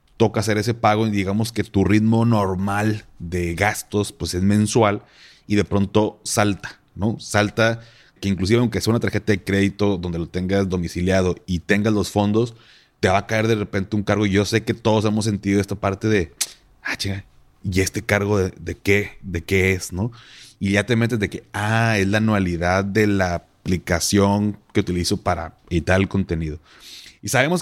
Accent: Mexican